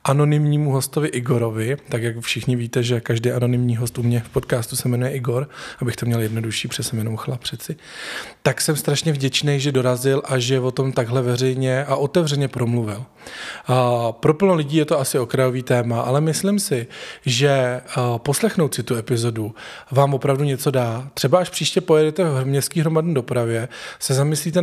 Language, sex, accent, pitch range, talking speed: Czech, male, native, 125-155 Hz, 175 wpm